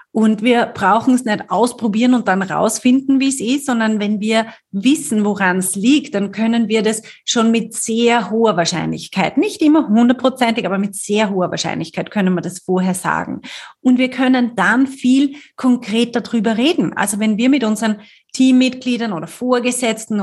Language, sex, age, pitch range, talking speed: German, female, 30-49, 205-255 Hz, 170 wpm